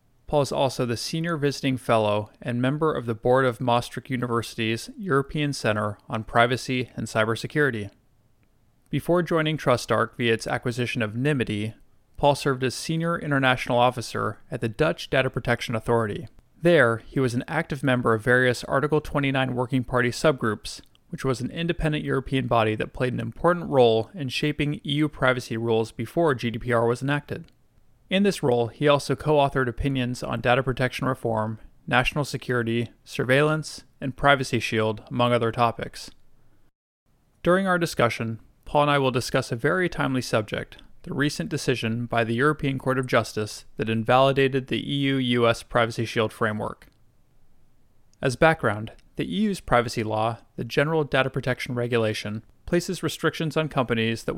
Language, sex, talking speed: English, male, 150 wpm